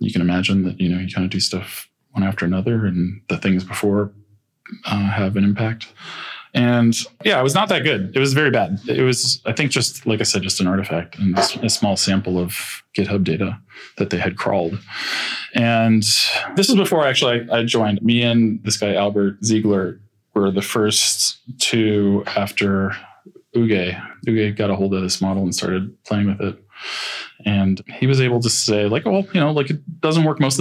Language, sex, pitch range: English, male, 100-120 Hz